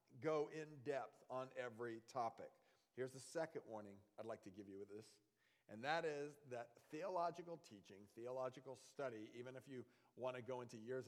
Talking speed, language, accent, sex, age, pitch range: 175 wpm, English, American, male, 40-59, 115-150 Hz